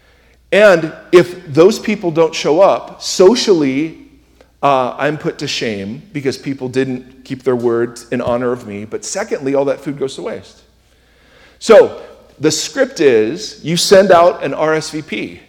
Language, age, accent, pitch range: English, 40-59, American, 140-215 Hz